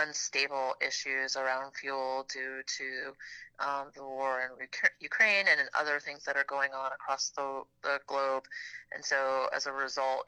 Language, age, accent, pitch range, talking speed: English, 30-49, American, 135-150 Hz, 160 wpm